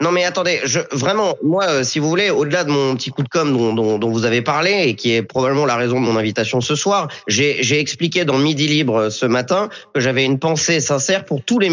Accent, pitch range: French, 130-170 Hz